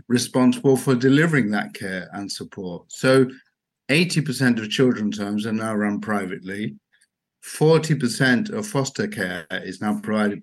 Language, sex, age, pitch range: English, male, 50-69, 110-155 Hz